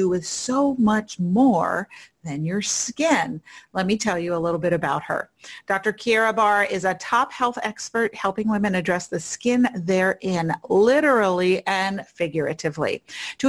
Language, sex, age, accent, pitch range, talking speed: English, female, 40-59, American, 175-235 Hz, 155 wpm